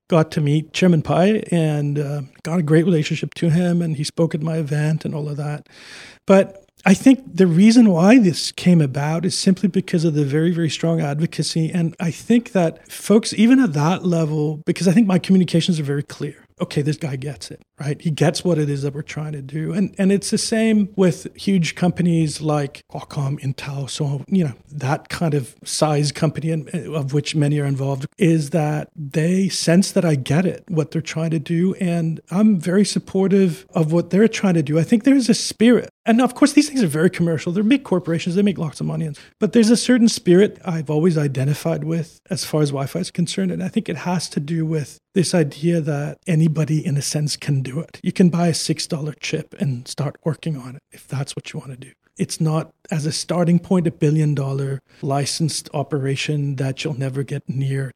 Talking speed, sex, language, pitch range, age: 215 wpm, male, English, 150-185 Hz, 40-59